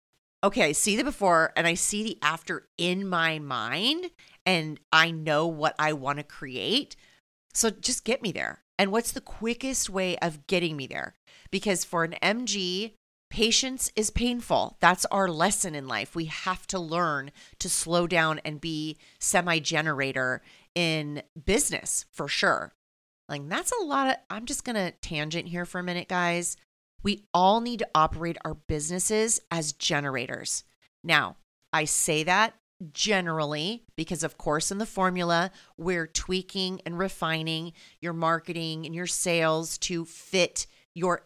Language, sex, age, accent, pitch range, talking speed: English, female, 30-49, American, 160-195 Hz, 155 wpm